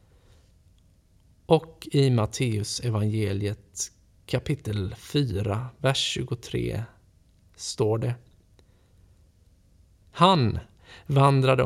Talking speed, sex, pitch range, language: 55 wpm, male, 95-140 Hz, Swedish